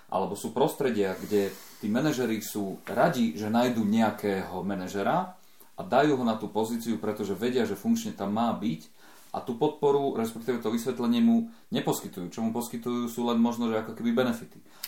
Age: 30-49